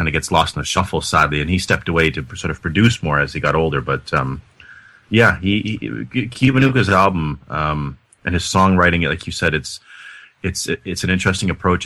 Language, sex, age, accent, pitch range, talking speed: English, male, 30-49, American, 80-105 Hz, 200 wpm